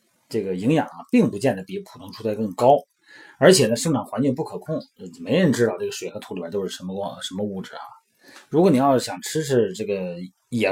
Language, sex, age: Chinese, male, 30-49